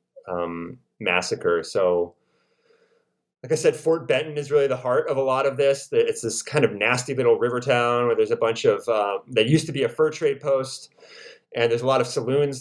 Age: 30-49